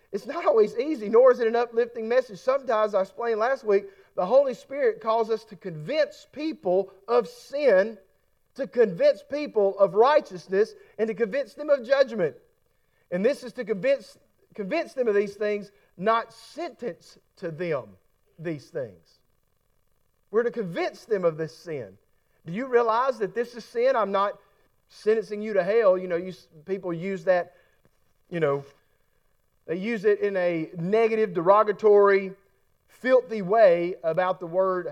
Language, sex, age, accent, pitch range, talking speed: English, male, 40-59, American, 185-260 Hz, 160 wpm